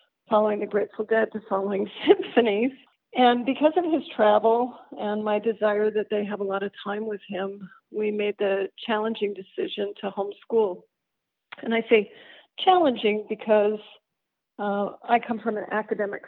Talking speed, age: 155 wpm, 50-69